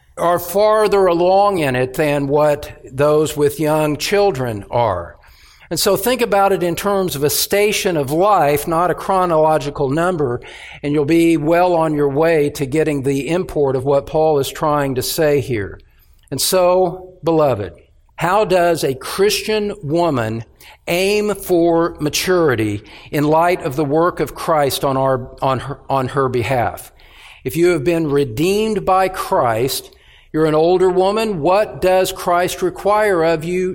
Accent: American